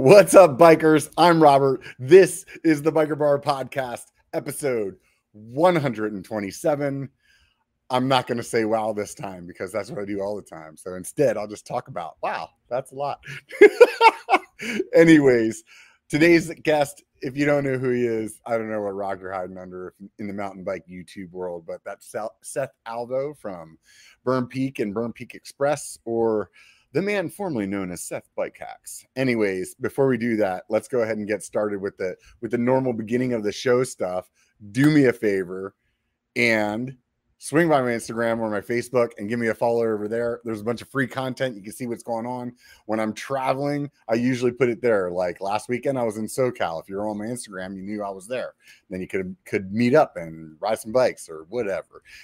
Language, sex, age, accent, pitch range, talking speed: English, male, 30-49, American, 105-135 Hz, 195 wpm